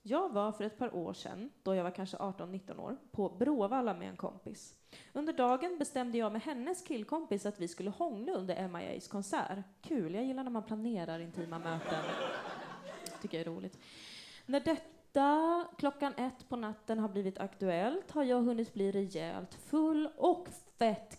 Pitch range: 195-290 Hz